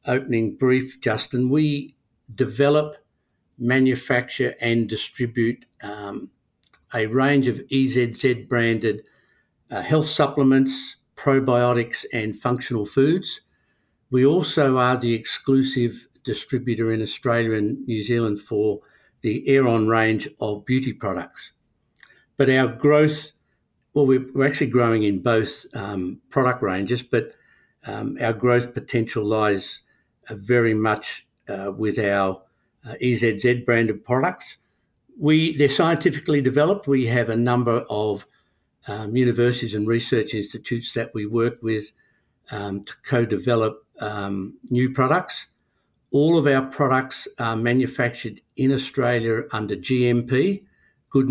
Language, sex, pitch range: English, male, 110-135 Hz